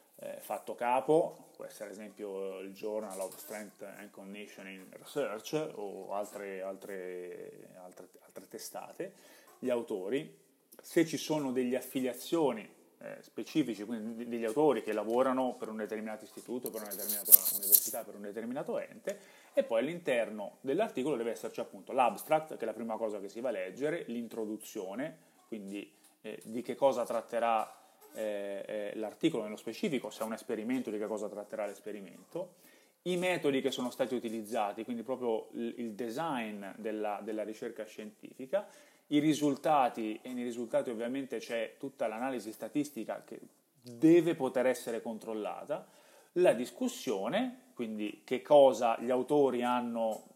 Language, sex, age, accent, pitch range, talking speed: Italian, male, 30-49, native, 105-130 Hz, 140 wpm